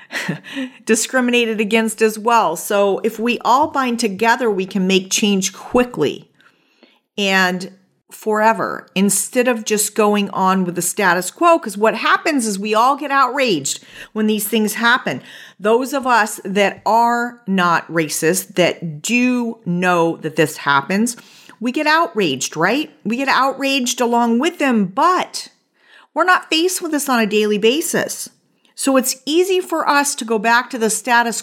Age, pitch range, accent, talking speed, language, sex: 40-59, 210-275 Hz, American, 155 wpm, English, female